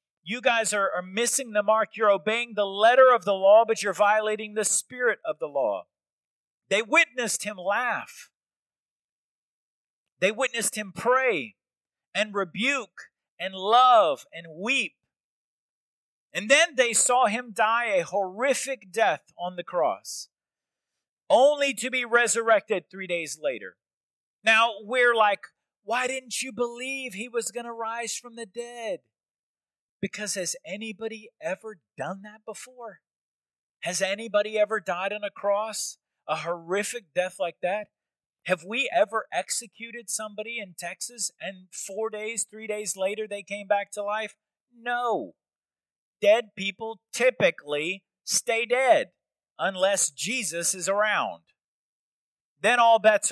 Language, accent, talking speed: English, American, 135 wpm